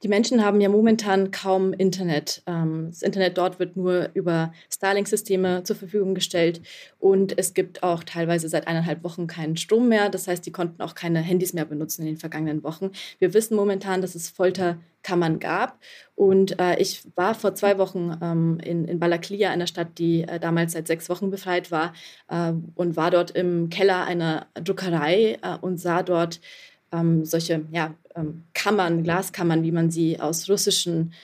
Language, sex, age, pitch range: German, female, 20-39, 165-190 Hz